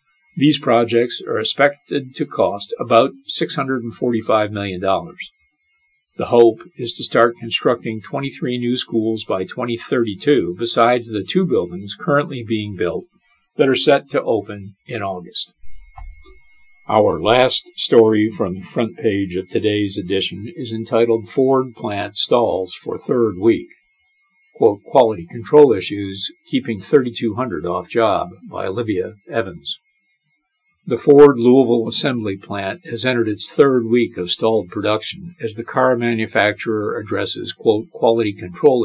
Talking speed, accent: 130 wpm, American